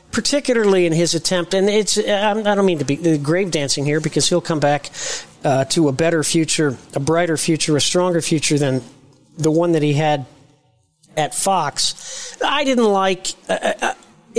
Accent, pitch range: American, 155-205 Hz